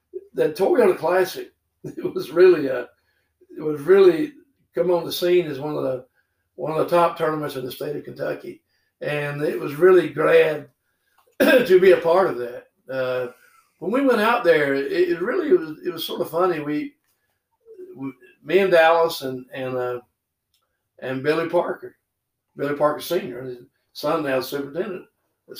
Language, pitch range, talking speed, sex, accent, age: English, 135-185 Hz, 175 wpm, male, American, 60-79